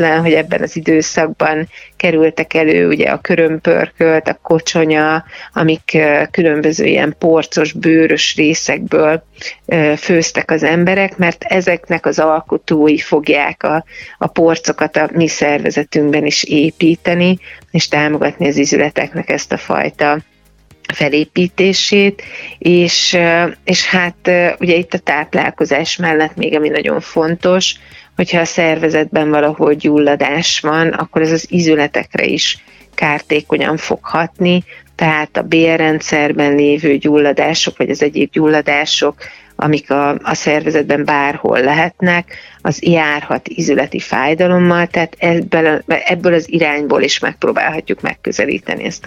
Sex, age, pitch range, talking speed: female, 30-49, 150-170 Hz, 115 wpm